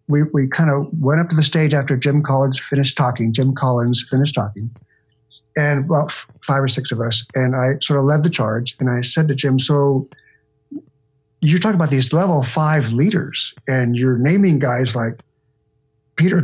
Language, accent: English, American